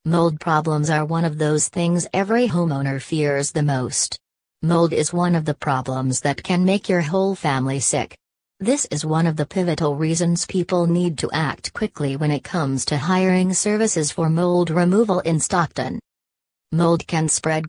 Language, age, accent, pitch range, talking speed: English, 40-59, American, 145-175 Hz, 175 wpm